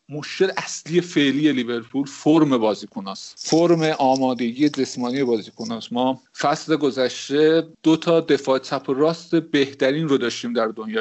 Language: Persian